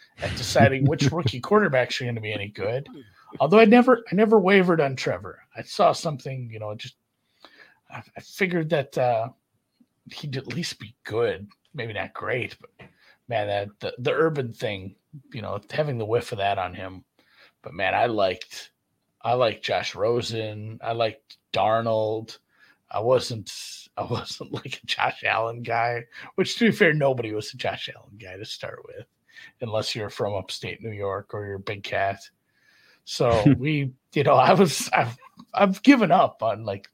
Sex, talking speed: male, 180 wpm